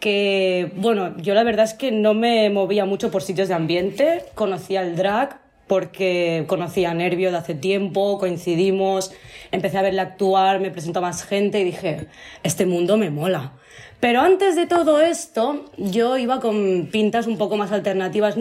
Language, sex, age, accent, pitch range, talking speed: Spanish, female, 20-39, Spanish, 185-220 Hz, 175 wpm